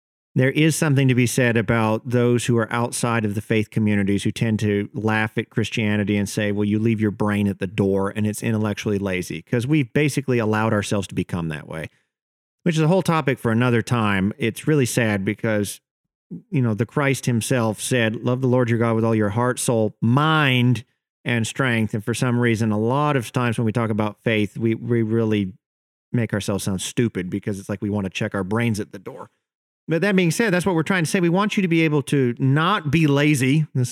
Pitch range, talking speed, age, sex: 110-140 Hz, 230 wpm, 40-59, male